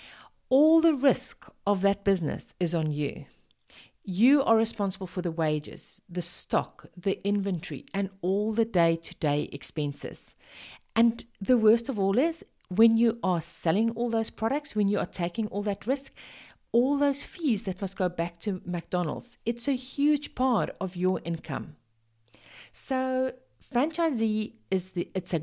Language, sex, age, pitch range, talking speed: English, female, 40-59, 155-225 Hz, 150 wpm